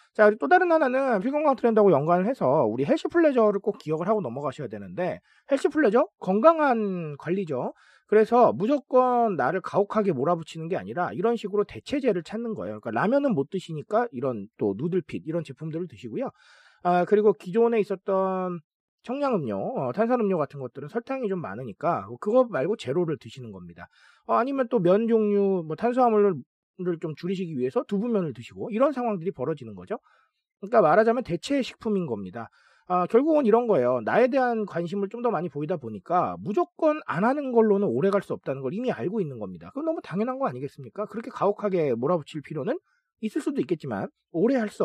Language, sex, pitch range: Korean, male, 170-245 Hz